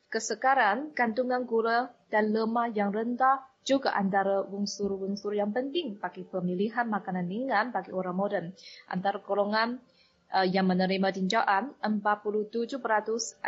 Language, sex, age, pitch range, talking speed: Malay, female, 20-39, 200-240 Hz, 115 wpm